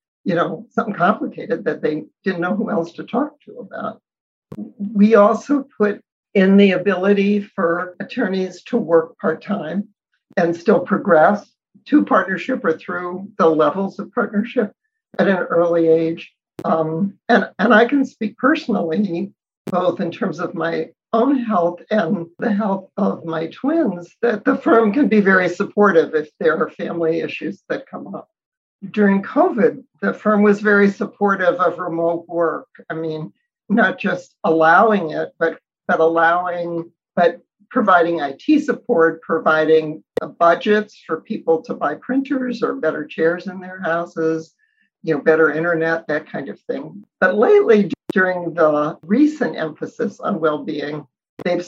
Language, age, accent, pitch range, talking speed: English, 60-79, American, 165-225 Hz, 150 wpm